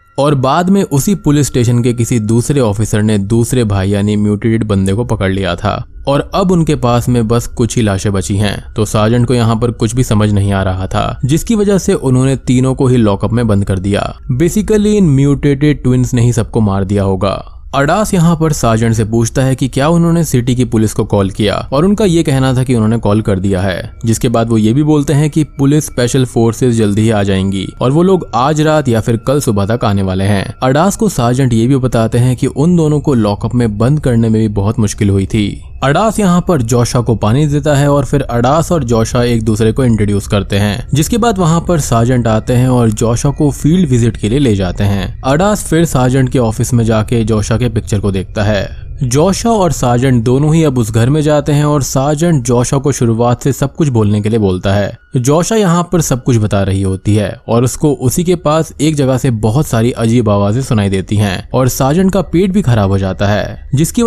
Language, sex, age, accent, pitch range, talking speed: Hindi, male, 20-39, native, 110-145 Hz, 230 wpm